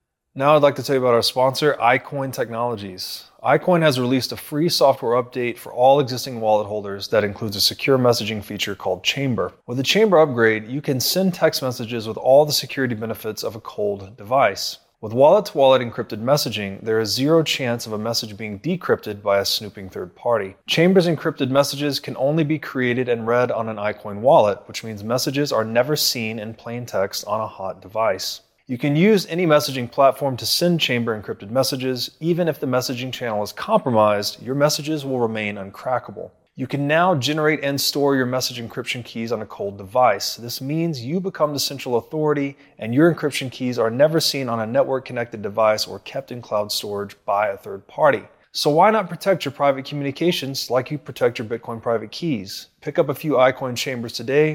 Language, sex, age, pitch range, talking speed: English, male, 20-39, 115-145 Hz, 195 wpm